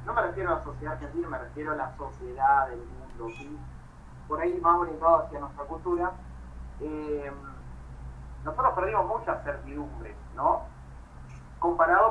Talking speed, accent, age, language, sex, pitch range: 145 wpm, Argentinian, 30-49, Spanish, male, 145-205 Hz